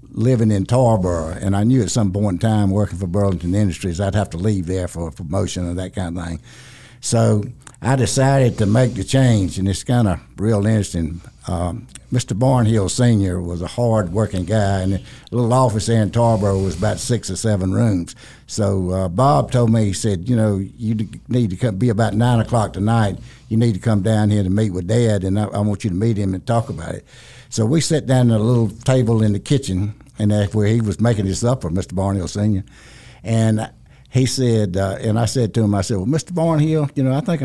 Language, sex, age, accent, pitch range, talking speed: English, male, 60-79, American, 95-120 Hz, 230 wpm